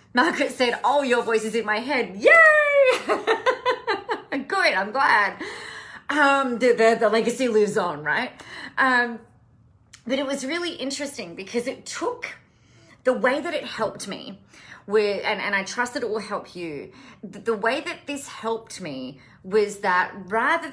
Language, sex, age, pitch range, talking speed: English, female, 30-49, 190-265 Hz, 160 wpm